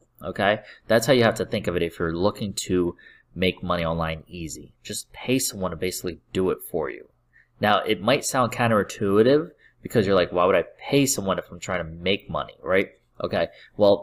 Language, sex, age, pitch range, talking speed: English, male, 30-49, 85-115 Hz, 205 wpm